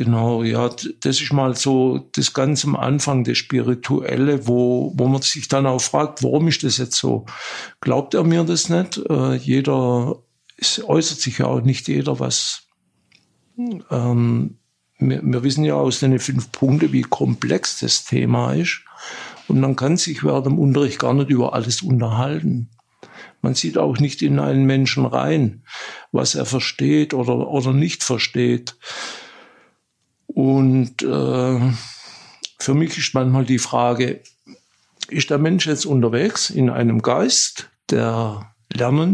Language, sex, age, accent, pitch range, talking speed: German, male, 60-79, German, 120-150 Hz, 150 wpm